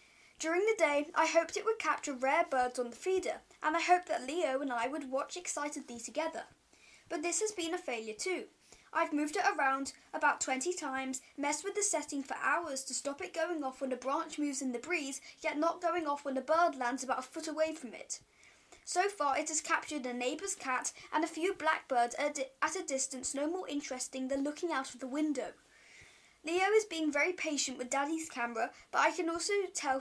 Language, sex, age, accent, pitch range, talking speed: English, female, 20-39, British, 270-340 Hz, 215 wpm